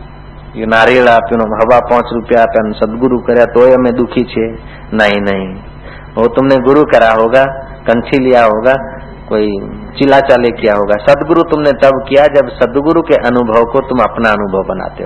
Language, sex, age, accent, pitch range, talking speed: Hindi, male, 50-69, native, 115-145 Hz, 165 wpm